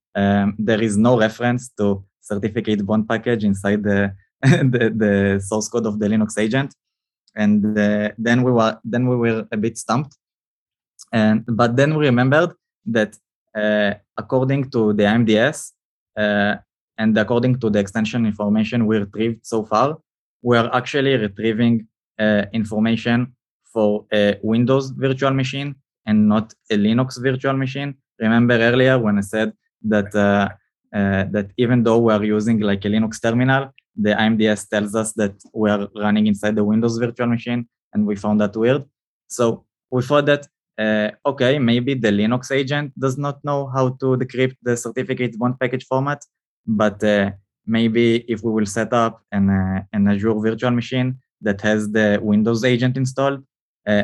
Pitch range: 105-125 Hz